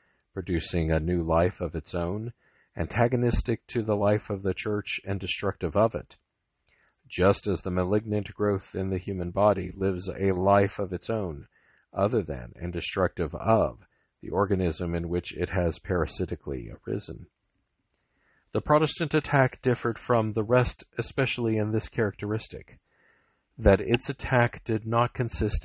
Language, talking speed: English, 145 wpm